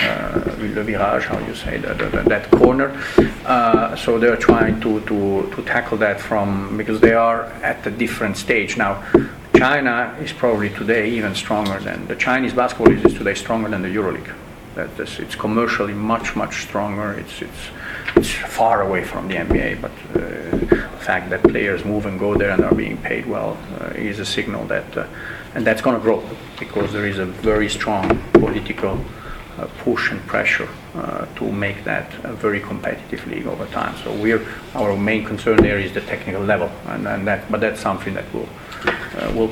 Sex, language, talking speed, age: male, English, 195 wpm, 40-59